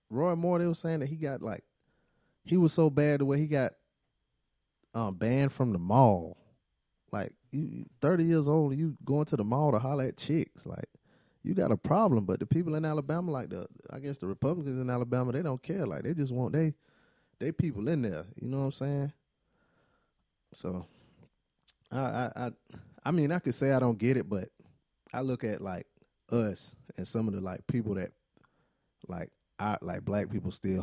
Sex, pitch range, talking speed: male, 100-140 Hz, 200 wpm